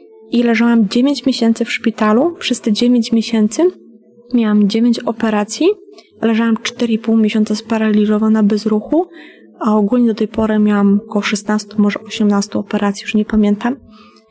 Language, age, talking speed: Polish, 20-39, 140 wpm